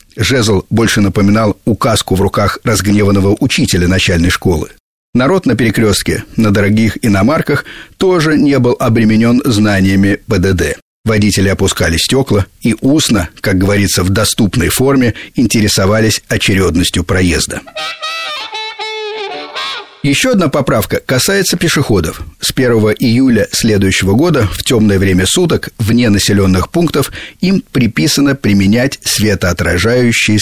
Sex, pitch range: male, 95-125 Hz